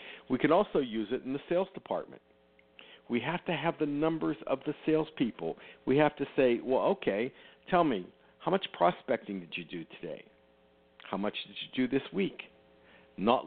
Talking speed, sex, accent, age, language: 185 wpm, male, American, 60-79, English